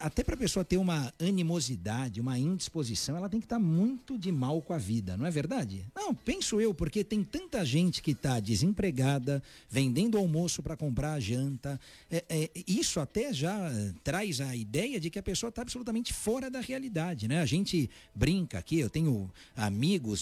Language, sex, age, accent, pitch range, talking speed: Portuguese, male, 60-79, Brazilian, 125-190 Hz, 180 wpm